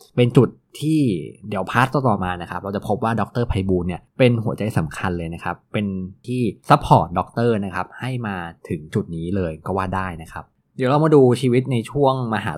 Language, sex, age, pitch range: Thai, male, 20-39, 95-125 Hz